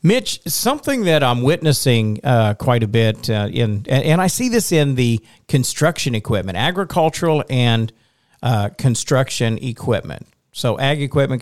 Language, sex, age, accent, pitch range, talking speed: English, male, 50-69, American, 110-135 Hz, 140 wpm